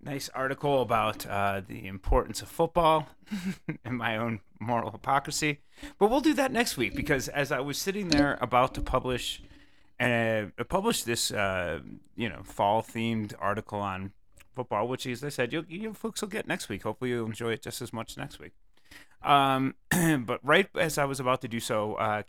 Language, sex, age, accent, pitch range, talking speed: English, male, 30-49, American, 105-140 Hz, 190 wpm